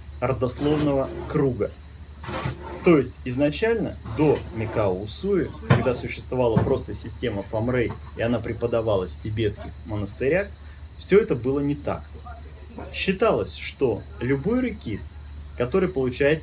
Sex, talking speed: male, 110 wpm